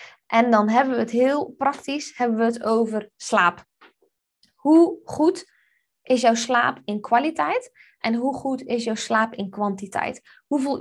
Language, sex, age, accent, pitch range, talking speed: Dutch, female, 20-39, Dutch, 225-270 Hz, 155 wpm